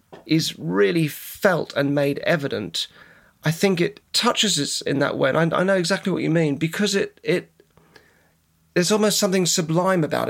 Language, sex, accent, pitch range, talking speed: English, male, British, 140-185 Hz, 175 wpm